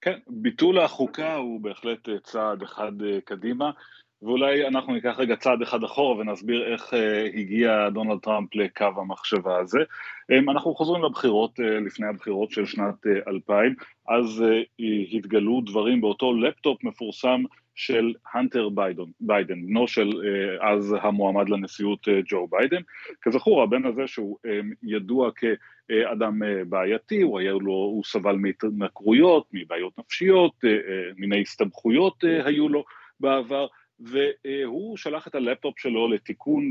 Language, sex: Hebrew, male